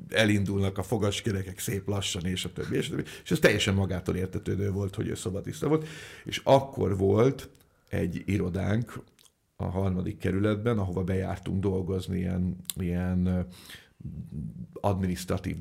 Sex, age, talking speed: male, 50-69, 125 wpm